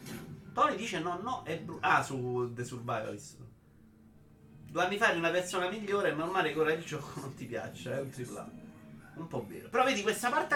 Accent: native